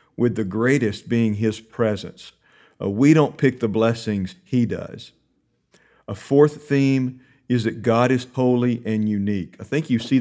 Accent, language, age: American, English, 50-69